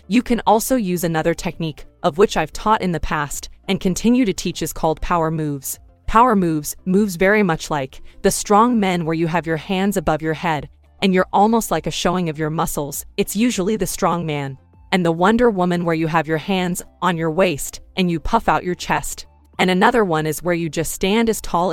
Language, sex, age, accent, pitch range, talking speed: English, female, 20-39, American, 160-205 Hz, 220 wpm